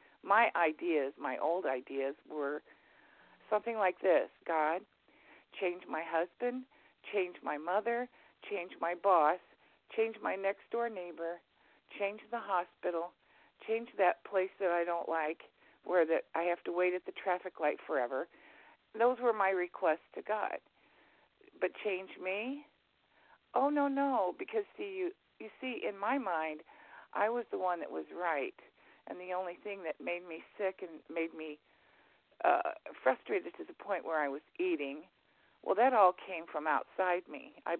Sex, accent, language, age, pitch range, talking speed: female, American, English, 50-69, 170-235 Hz, 155 wpm